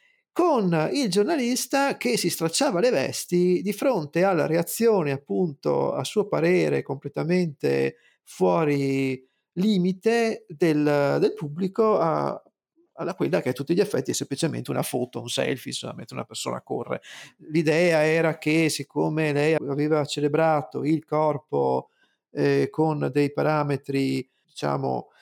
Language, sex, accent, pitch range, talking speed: Italian, male, native, 140-185 Hz, 125 wpm